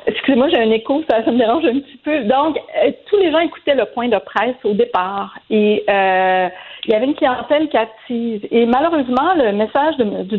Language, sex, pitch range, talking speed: French, female, 220-290 Hz, 210 wpm